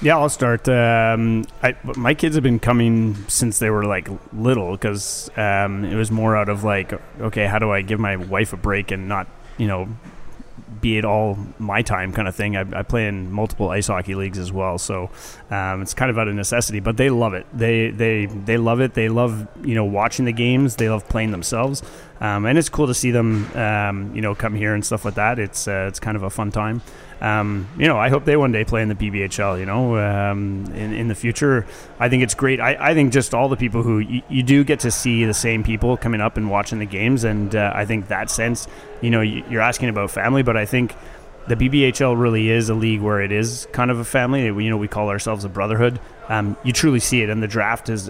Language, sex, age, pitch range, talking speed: English, male, 30-49, 100-120 Hz, 245 wpm